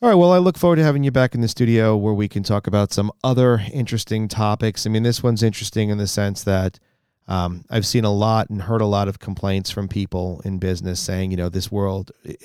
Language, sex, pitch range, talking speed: English, male, 100-130 Hz, 245 wpm